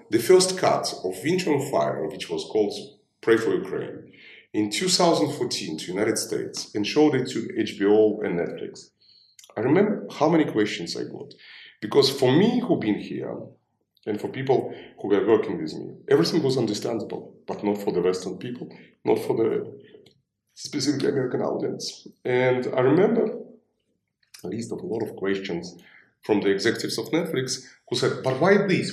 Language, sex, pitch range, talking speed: Ukrainian, male, 135-220 Hz, 170 wpm